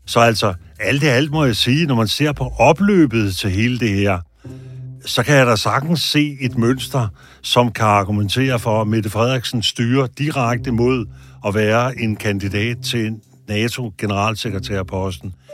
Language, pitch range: Danish, 105-130 Hz